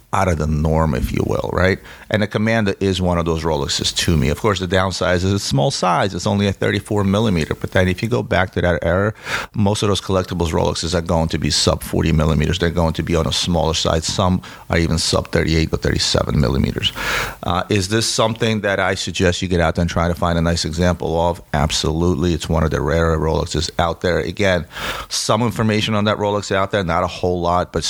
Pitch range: 80-95 Hz